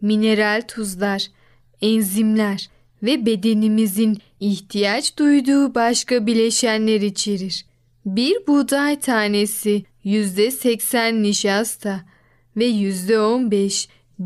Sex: female